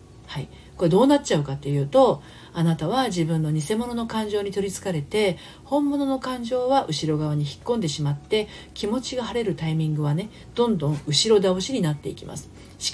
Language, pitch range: Japanese, 155-255 Hz